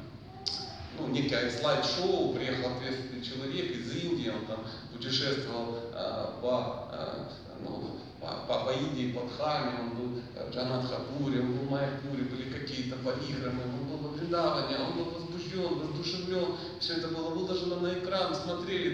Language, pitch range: Russian, 130-185 Hz